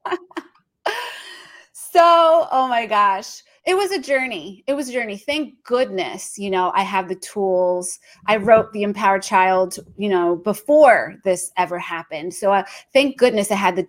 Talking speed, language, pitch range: 165 wpm, English, 180-245 Hz